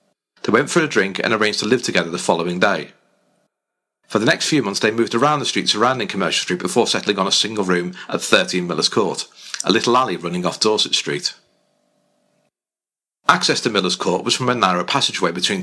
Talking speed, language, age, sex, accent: 205 wpm, English, 40-59, male, British